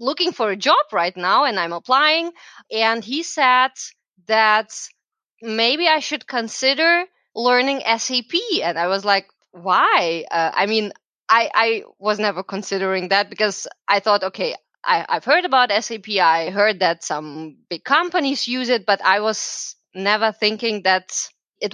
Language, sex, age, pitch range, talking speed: English, female, 20-39, 195-270 Hz, 155 wpm